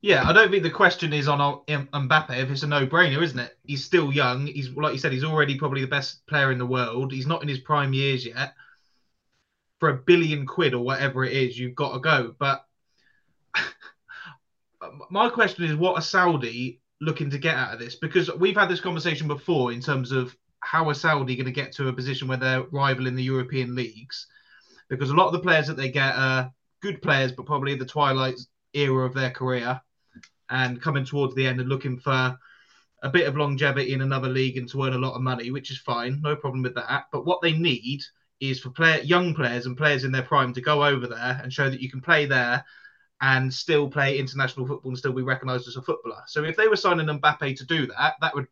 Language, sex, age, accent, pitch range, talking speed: English, male, 20-39, British, 130-155 Hz, 230 wpm